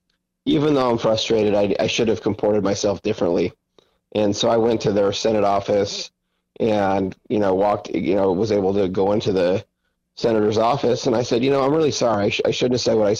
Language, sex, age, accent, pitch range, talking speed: English, male, 30-49, American, 100-120 Hz, 220 wpm